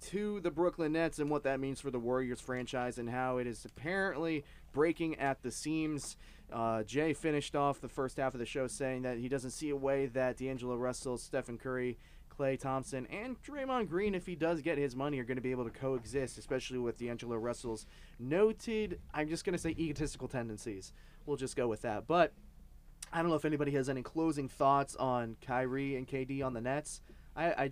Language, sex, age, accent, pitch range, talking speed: English, male, 20-39, American, 125-160 Hz, 210 wpm